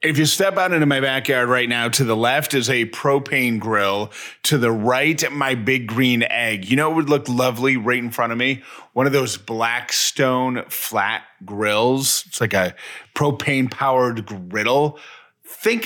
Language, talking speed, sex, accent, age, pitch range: English, 180 wpm, male, American, 30-49, 115-145 Hz